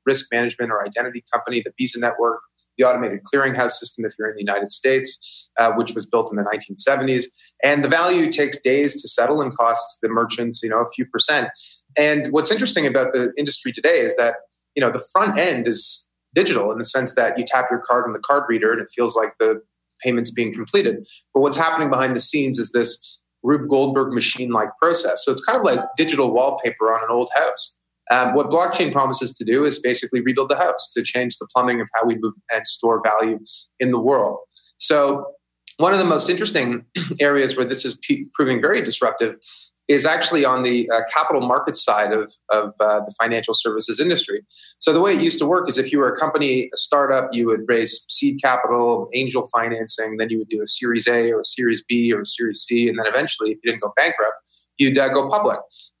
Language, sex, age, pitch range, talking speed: English, male, 30-49, 115-140 Hz, 215 wpm